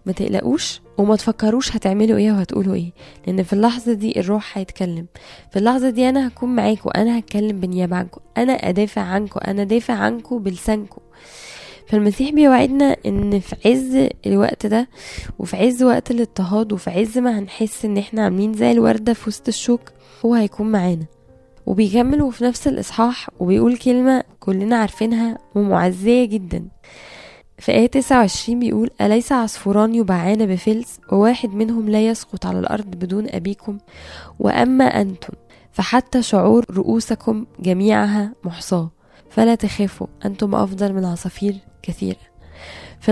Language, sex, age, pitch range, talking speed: Arabic, female, 10-29, 195-235 Hz, 135 wpm